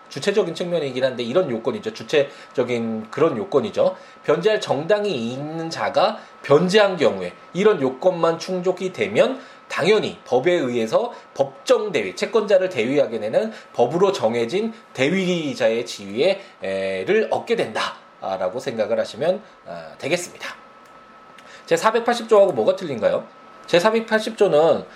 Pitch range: 145-220 Hz